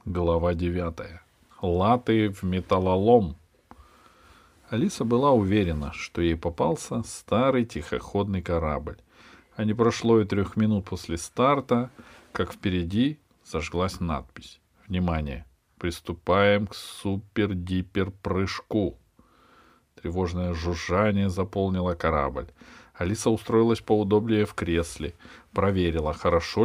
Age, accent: 40-59, native